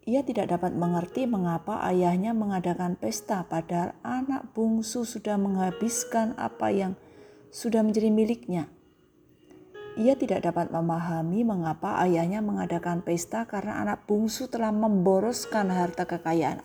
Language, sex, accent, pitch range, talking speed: Indonesian, female, native, 175-225 Hz, 120 wpm